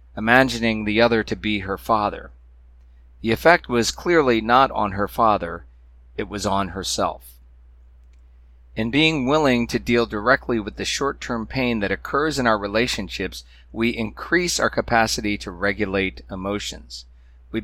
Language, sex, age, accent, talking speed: English, male, 40-59, American, 145 wpm